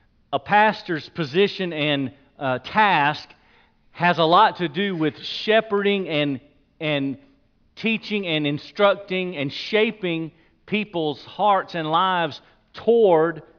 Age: 40-59